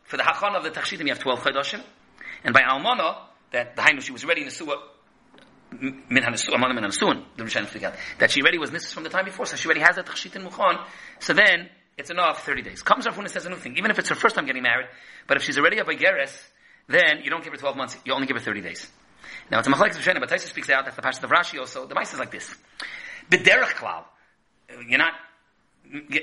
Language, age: English, 30-49